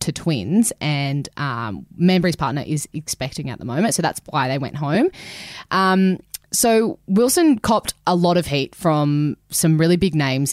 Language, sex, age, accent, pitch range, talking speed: English, female, 20-39, Australian, 145-170 Hz, 170 wpm